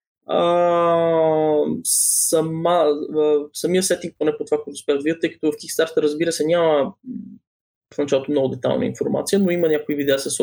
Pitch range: 145-190 Hz